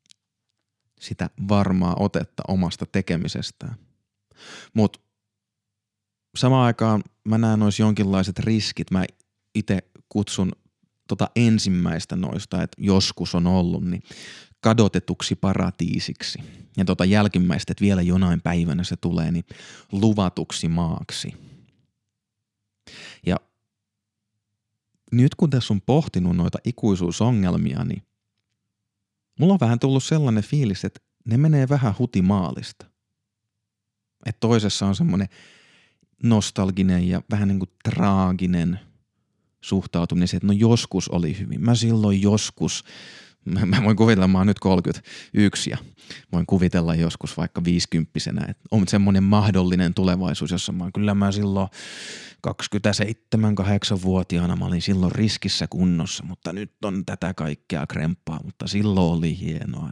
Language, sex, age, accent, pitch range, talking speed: Finnish, male, 30-49, native, 90-110 Hz, 115 wpm